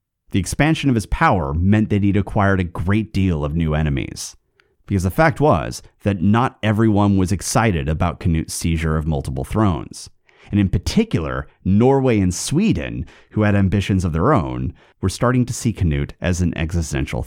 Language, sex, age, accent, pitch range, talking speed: English, male, 30-49, American, 85-115 Hz, 175 wpm